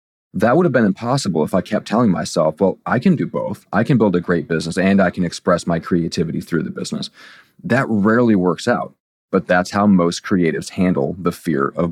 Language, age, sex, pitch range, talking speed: English, 40-59, male, 85-100 Hz, 215 wpm